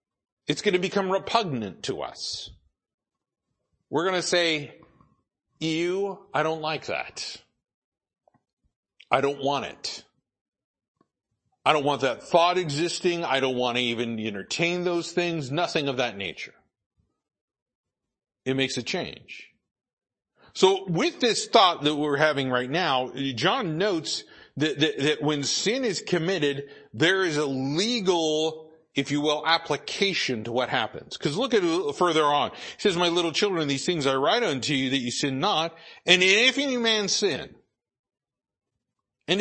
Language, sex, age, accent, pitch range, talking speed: English, male, 50-69, American, 135-175 Hz, 150 wpm